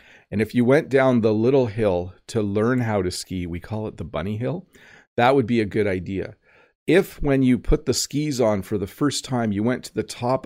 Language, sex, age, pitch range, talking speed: English, male, 40-59, 100-125 Hz, 235 wpm